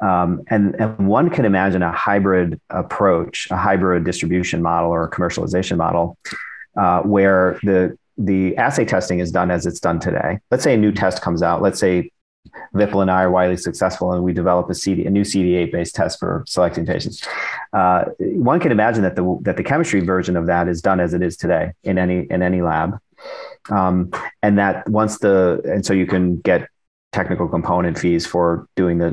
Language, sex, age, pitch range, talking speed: English, male, 40-59, 90-100 Hz, 200 wpm